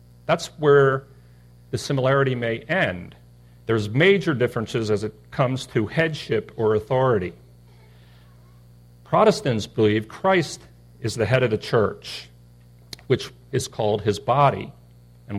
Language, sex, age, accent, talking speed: English, male, 50-69, American, 120 wpm